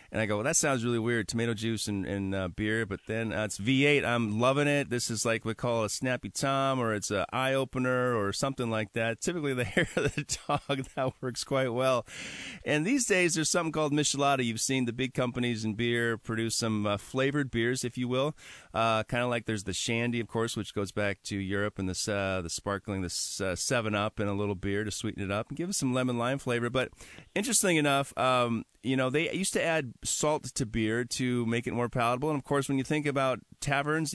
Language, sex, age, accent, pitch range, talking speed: English, male, 30-49, American, 110-145 Hz, 225 wpm